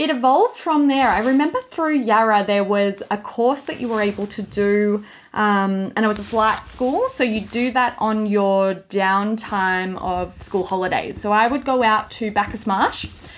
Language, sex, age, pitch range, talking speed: English, female, 10-29, 200-250 Hz, 195 wpm